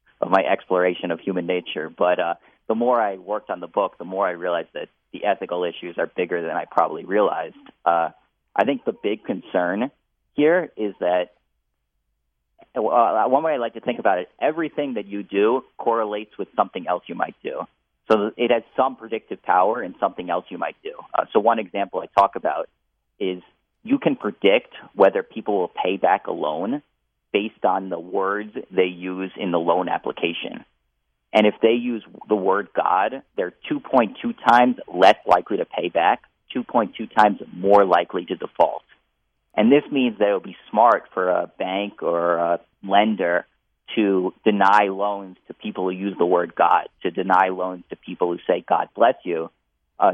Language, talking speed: English, 185 wpm